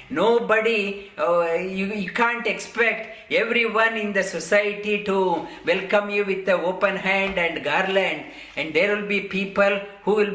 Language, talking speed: English, 150 wpm